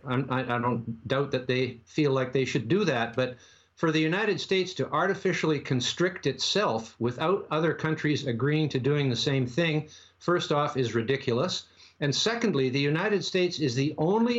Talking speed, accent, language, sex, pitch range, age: 175 wpm, American, English, male, 130-175 Hz, 50-69